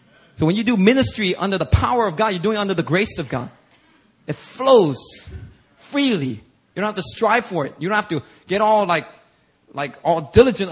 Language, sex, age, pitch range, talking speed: English, male, 30-49, 135-195 Hz, 215 wpm